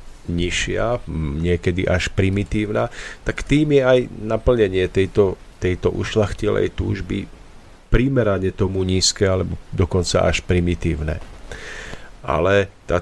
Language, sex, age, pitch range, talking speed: Slovak, male, 40-59, 90-110 Hz, 95 wpm